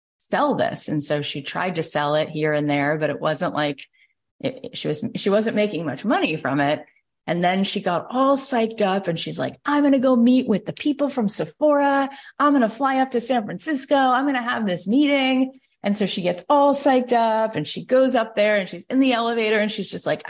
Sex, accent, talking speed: female, American, 240 wpm